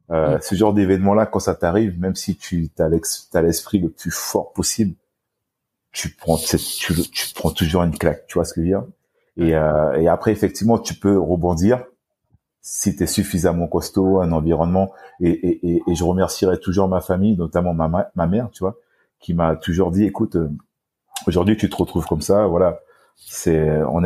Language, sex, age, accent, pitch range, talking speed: French, male, 40-59, French, 80-95 Hz, 195 wpm